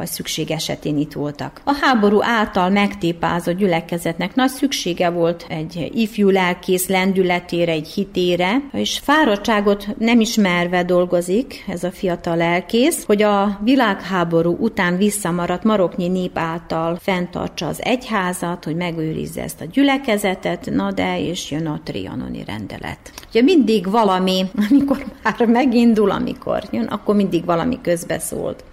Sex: female